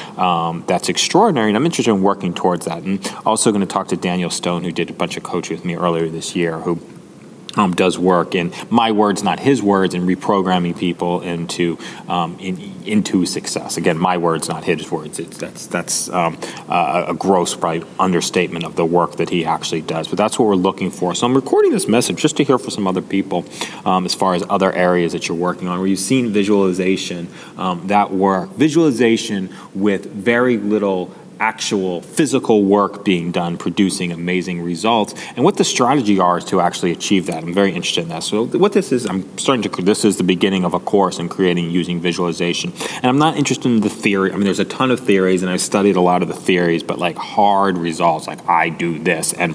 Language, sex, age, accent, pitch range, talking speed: English, male, 30-49, American, 90-105 Hz, 220 wpm